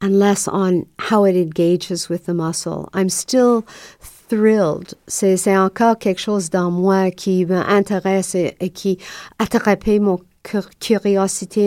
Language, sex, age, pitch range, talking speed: French, female, 50-69, 170-195 Hz, 145 wpm